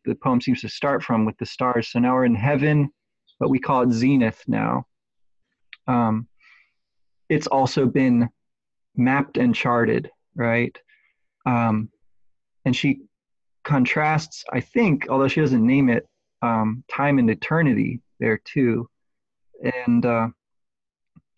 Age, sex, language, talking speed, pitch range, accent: 30-49, male, English, 130 wpm, 120-140 Hz, American